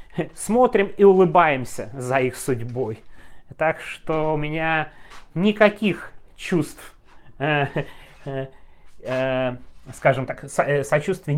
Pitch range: 115-150 Hz